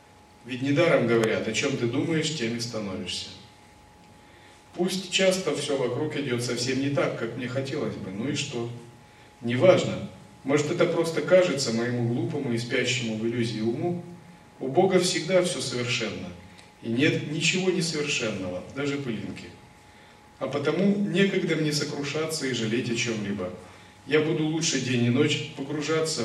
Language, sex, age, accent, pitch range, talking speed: Russian, male, 40-59, native, 115-155 Hz, 145 wpm